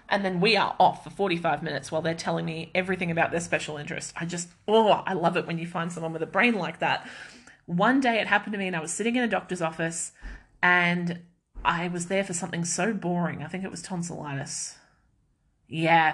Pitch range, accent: 160-200 Hz, Australian